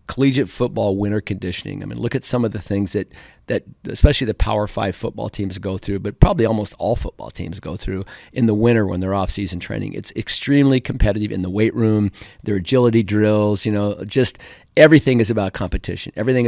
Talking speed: 210 wpm